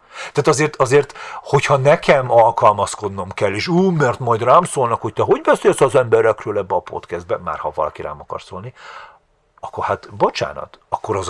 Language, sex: Hungarian, male